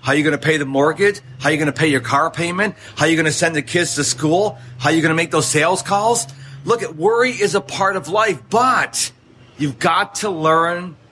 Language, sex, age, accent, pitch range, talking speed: English, male, 40-59, American, 135-200 Hz, 235 wpm